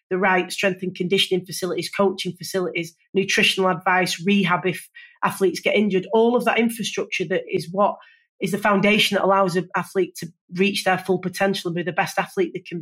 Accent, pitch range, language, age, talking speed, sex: British, 180-210 Hz, English, 30-49, 190 wpm, female